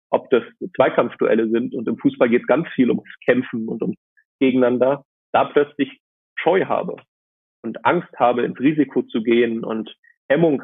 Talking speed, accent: 165 wpm, German